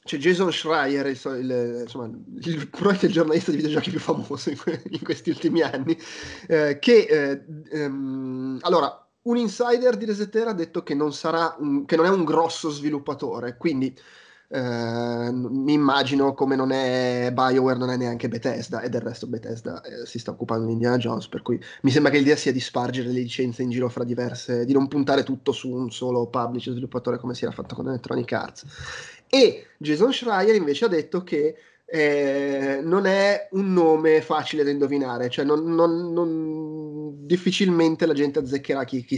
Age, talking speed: 20-39, 185 wpm